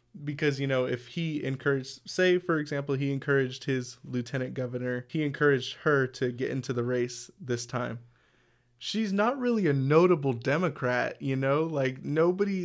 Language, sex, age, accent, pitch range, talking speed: English, male, 20-39, American, 130-160 Hz, 160 wpm